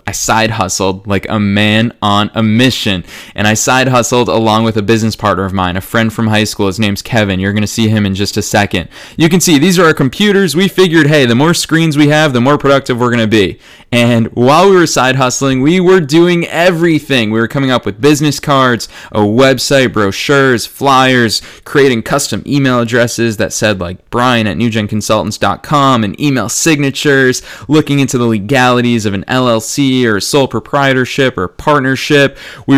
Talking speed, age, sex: 195 wpm, 20-39, male